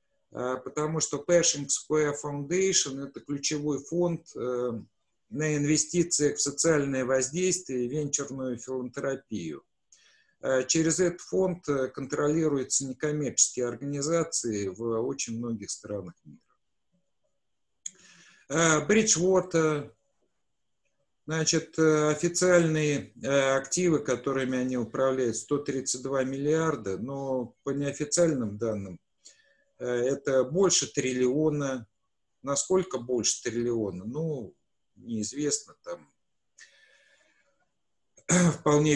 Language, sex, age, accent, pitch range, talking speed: Russian, male, 50-69, native, 130-160 Hz, 80 wpm